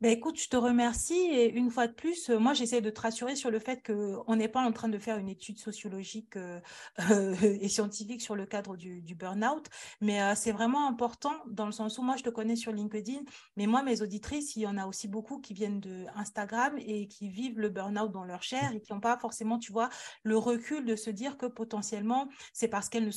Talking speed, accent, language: 240 wpm, French, French